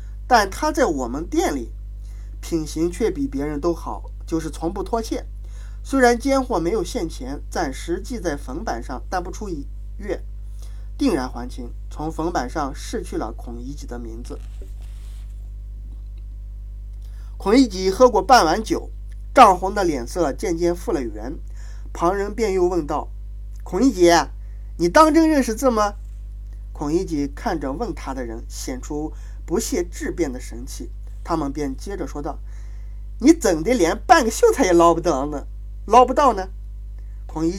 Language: Chinese